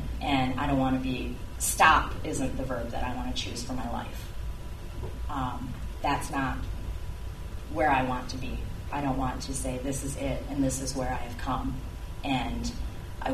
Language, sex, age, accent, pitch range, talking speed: English, female, 30-49, American, 95-135 Hz, 195 wpm